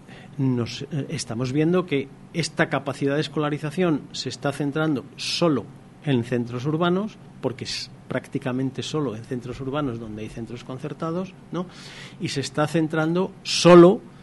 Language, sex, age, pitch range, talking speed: Spanish, male, 40-59, 130-160 Hz, 135 wpm